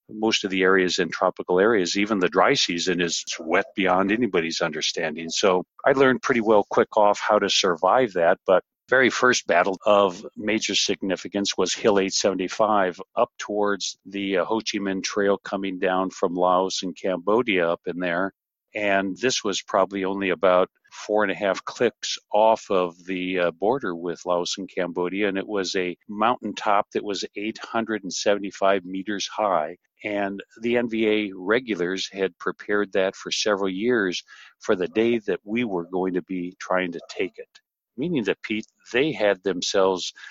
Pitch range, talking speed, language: 90-105 Hz, 165 wpm, English